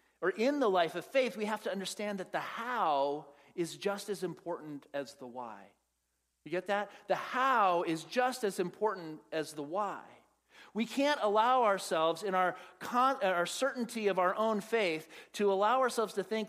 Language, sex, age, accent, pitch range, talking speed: English, male, 40-59, American, 160-215 Hz, 180 wpm